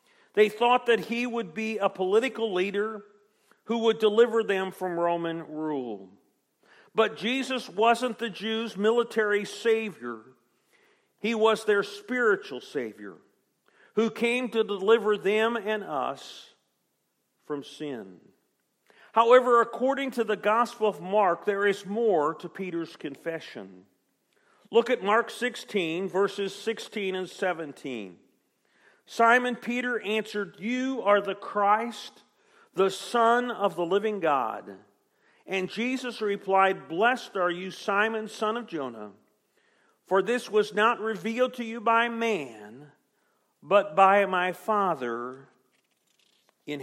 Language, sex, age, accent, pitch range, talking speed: English, male, 50-69, American, 185-230 Hz, 120 wpm